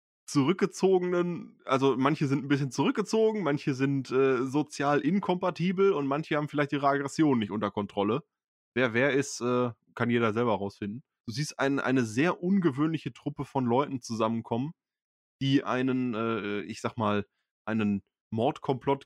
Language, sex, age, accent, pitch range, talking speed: German, male, 20-39, German, 110-145 Hz, 150 wpm